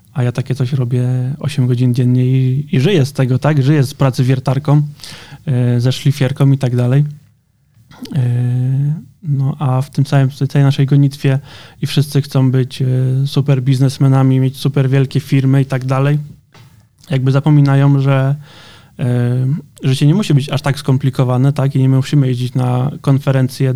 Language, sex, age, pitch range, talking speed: Polish, male, 20-39, 130-145 Hz, 165 wpm